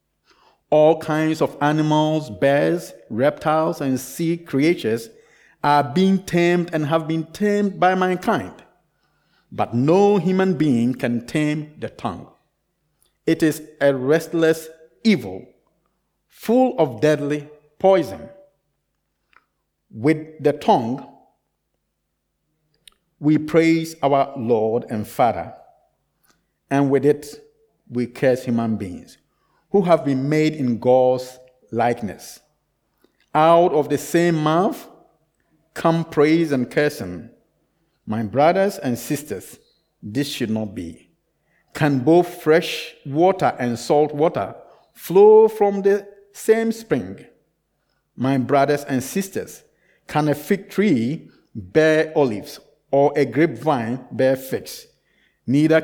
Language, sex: Swedish, male